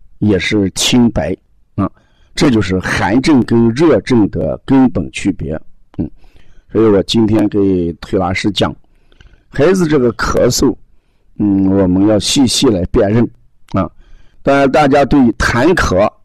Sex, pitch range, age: male, 90-120 Hz, 50-69